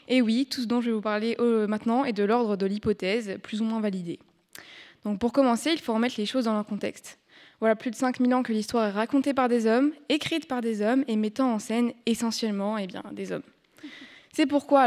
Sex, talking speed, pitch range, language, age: female, 230 wpm, 215-260 Hz, French, 20-39